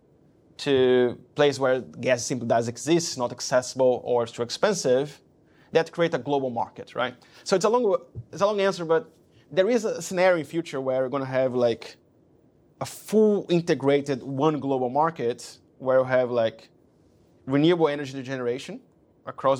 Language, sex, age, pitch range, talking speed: English, male, 30-49, 130-150 Hz, 170 wpm